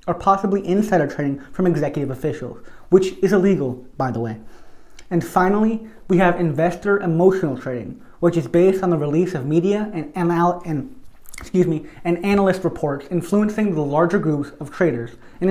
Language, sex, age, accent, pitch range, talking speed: English, male, 30-49, American, 150-190 Hz, 165 wpm